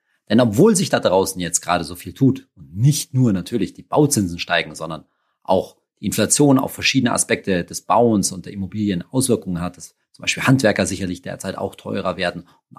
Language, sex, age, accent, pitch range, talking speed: German, male, 40-59, German, 100-140 Hz, 190 wpm